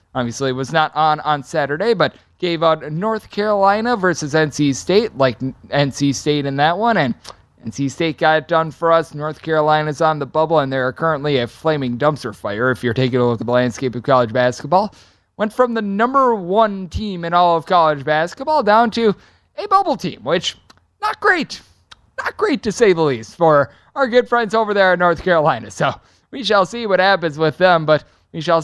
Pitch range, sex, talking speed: 145-195 Hz, male, 205 wpm